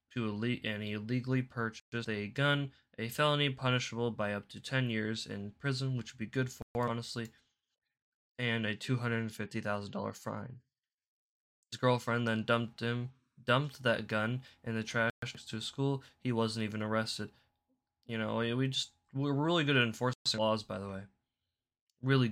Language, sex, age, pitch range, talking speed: English, male, 10-29, 110-130 Hz, 175 wpm